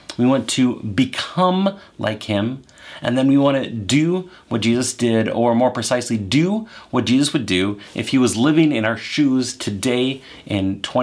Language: English